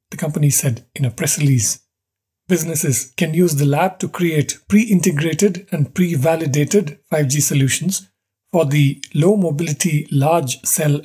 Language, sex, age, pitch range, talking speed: English, male, 60-79, 140-175 Hz, 125 wpm